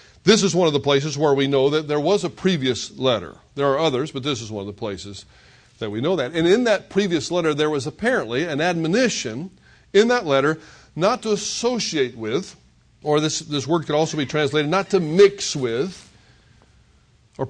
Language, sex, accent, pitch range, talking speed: English, male, American, 145-195 Hz, 200 wpm